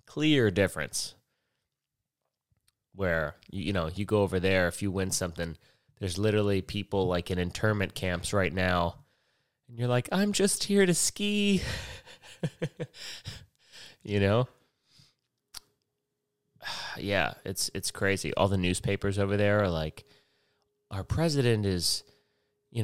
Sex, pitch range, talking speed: male, 95-135 Hz, 125 wpm